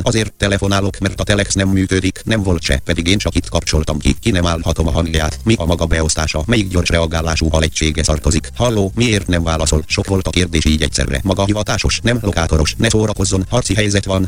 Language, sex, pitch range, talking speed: Hungarian, male, 95-105 Hz, 210 wpm